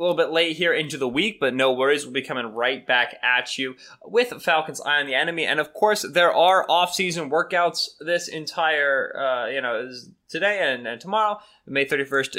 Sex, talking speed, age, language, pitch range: male, 205 wpm, 20-39, English, 130-170 Hz